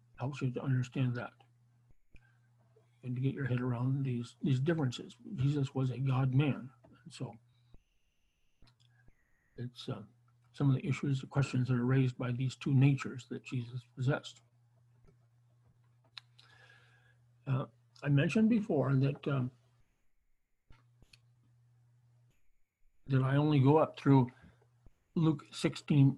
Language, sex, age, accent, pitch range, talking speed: English, male, 60-79, American, 120-135 Hz, 120 wpm